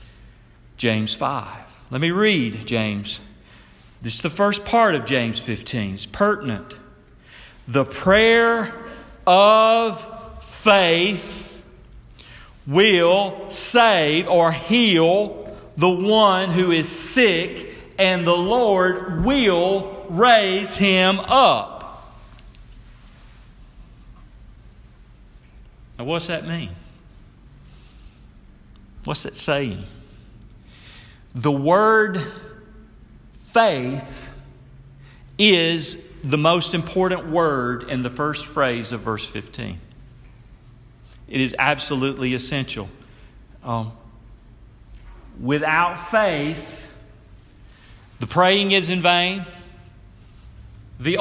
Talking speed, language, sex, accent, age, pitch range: 85 wpm, English, male, American, 50-69, 115-180 Hz